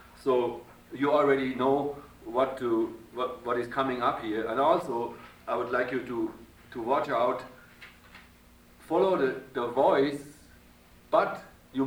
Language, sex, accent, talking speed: English, male, German, 140 wpm